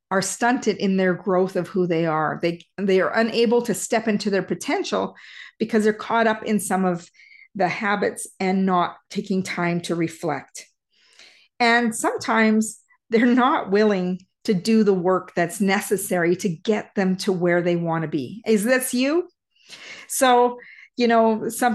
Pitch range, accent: 185-230 Hz, American